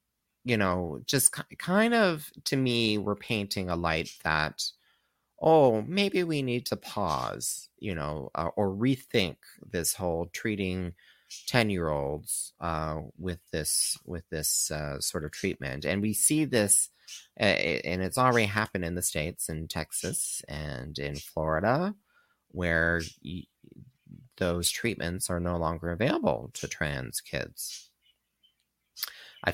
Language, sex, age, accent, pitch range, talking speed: English, male, 30-49, American, 80-125 Hz, 130 wpm